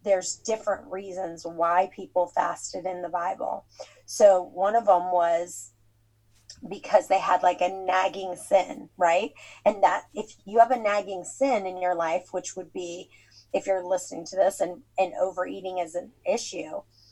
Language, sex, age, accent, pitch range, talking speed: English, female, 30-49, American, 175-200 Hz, 165 wpm